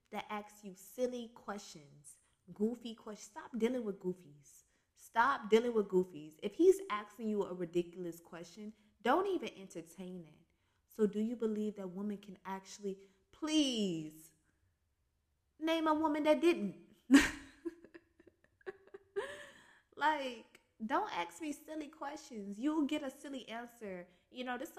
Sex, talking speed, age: female, 135 wpm, 20-39